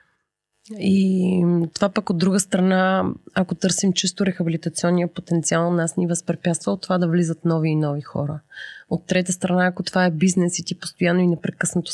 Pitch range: 165-190 Hz